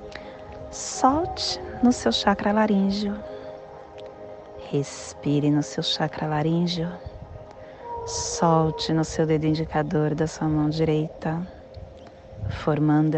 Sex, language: female, Portuguese